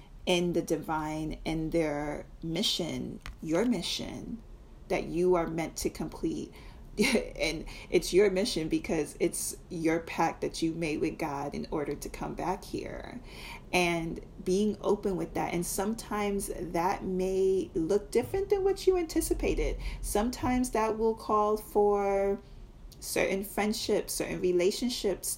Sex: female